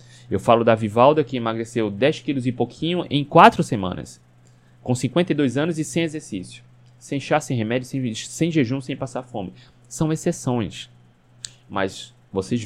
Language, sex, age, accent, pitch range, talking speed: Portuguese, male, 20-39, Brazilian, 115-135 Hz, 155 wpm